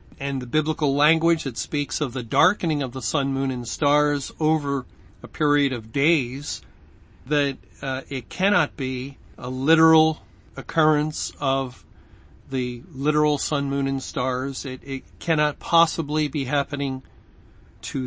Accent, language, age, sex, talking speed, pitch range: American, English, 40-59, male, 140 wpm, 130-160 Hz